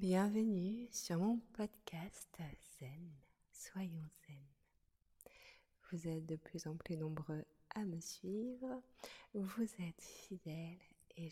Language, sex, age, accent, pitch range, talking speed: French, female, 30-49, French, 160-195 Hz, 110 wpm